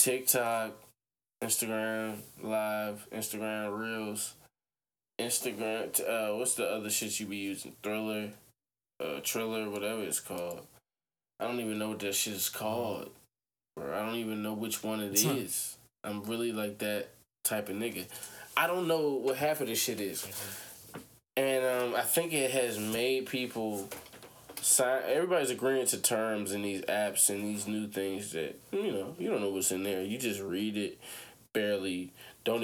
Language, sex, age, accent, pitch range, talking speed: English, male, 20-39, American, 100-125 Hz, 165 wpm